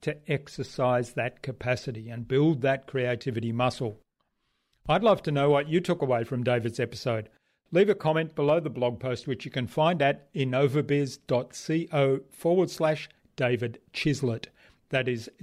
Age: 40-59